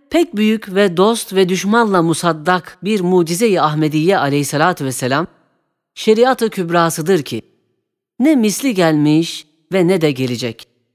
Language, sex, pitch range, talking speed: Turkish, female, 150-225 Hz, 120 wpm